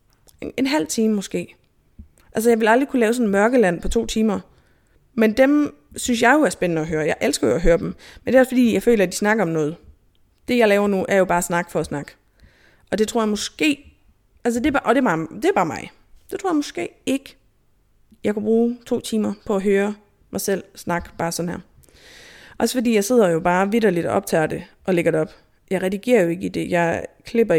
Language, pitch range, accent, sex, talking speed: Danish, 165-225 Hz, native, female, 245 wpm